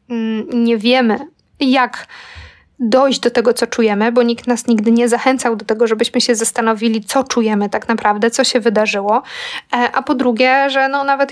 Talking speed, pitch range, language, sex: 170 wpm, 225-260 Hz, Polish, female